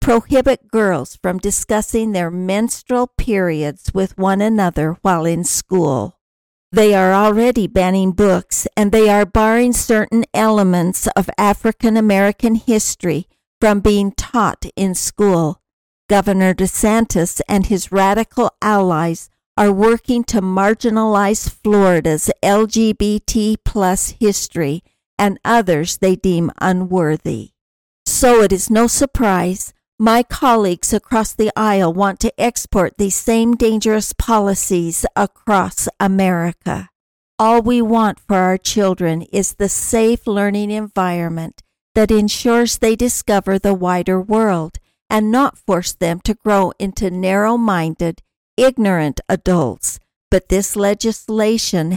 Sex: female